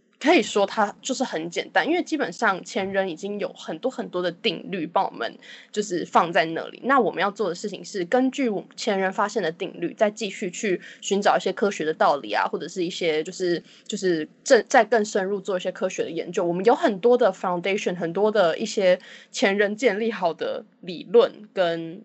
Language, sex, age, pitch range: Chinese, female, 10-29, 185-240 Hz